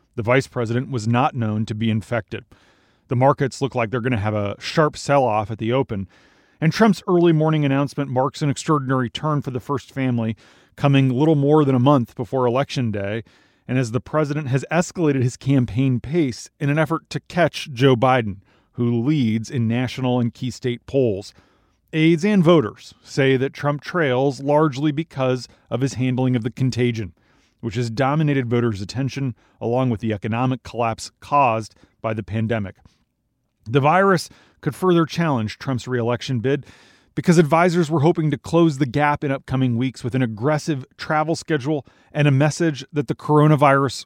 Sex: male